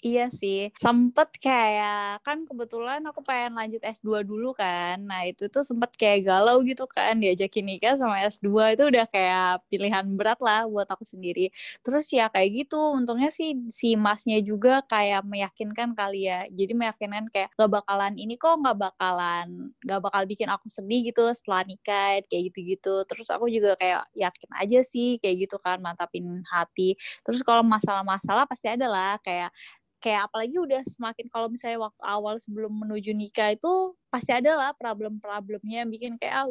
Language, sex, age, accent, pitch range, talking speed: Indonesian, female, 20-39, native, 200-255 Hz, 170 wpm